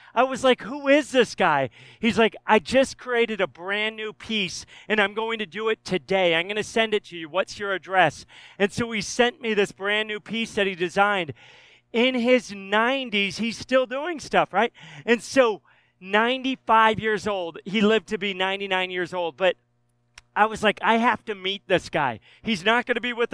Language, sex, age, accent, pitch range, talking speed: English, male, 40-59, American, 180-225 Hz, 210 wpm